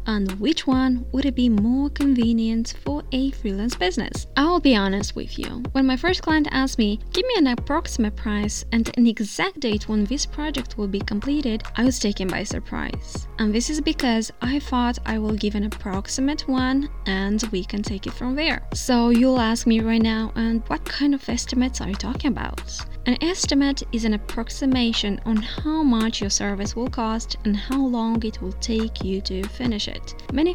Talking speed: 195 wpm